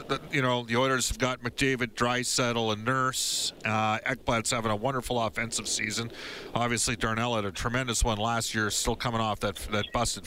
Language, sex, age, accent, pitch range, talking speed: English, male, 40-59, American, 120-145 Hz, 180 wpm